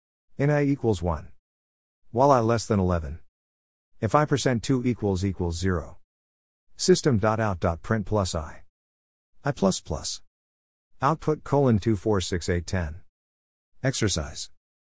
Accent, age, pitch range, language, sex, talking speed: American, 50-69, 80-110 Hz, English, male, 135 wpm